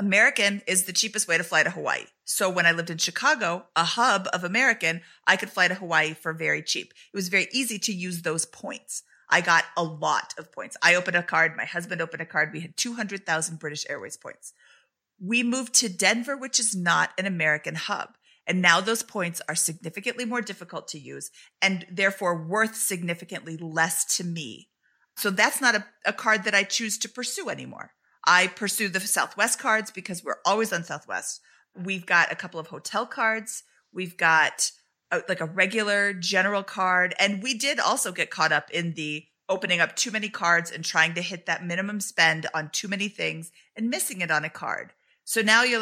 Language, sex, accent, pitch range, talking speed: English, female, American, 170-220 Hz, 200 wpm